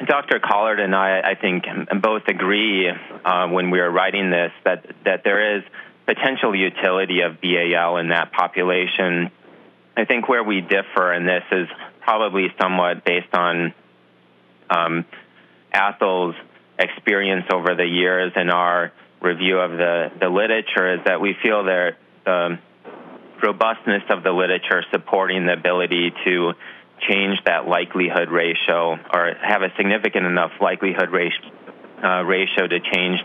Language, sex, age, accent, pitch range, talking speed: English, male, 30-49, American, 85-95 Hz, 145 wpm